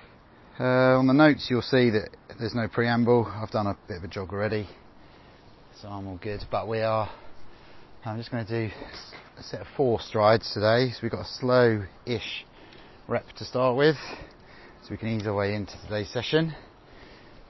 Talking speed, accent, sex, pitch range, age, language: 185 wpm, British, male, 100-130 Hz, 30-49, English